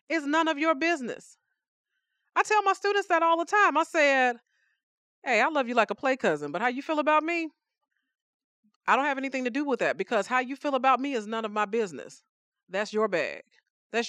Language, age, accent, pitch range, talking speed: English, 30-49, American, 195-270 Hz, 220 wpm